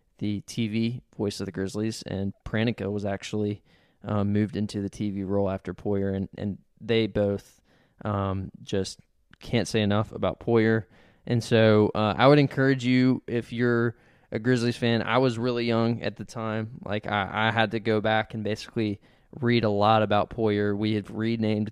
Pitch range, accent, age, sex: 100-115 Hz, American, 20-39, male